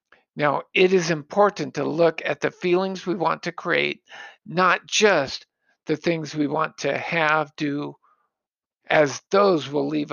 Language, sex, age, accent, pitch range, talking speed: English, male, 50-69, American, 155-190 Hz, 155 wpm